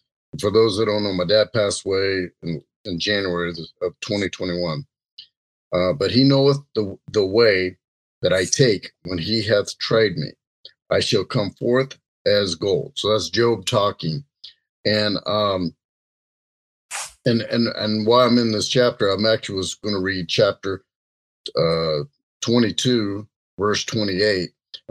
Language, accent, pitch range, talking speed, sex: English, American, 95-120 Hz, 140 wpm, male